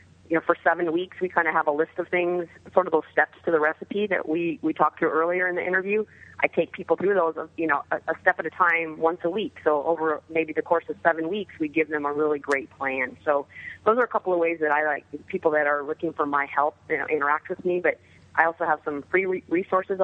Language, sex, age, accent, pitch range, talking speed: English, female, 30-49, American, 150-175 Hz, 265 wpm